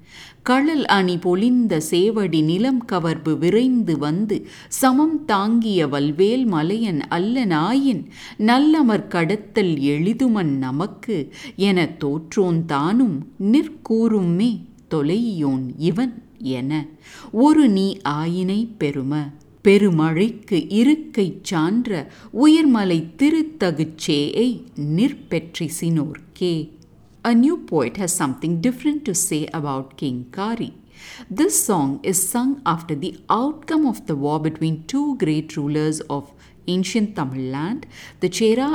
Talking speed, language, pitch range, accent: 115 wpm, English, 155-235 Hz, Indian